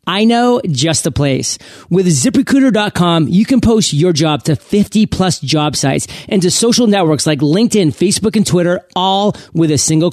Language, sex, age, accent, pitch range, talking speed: English, male, 30-49, American, 155-210 Hz, 170 wpm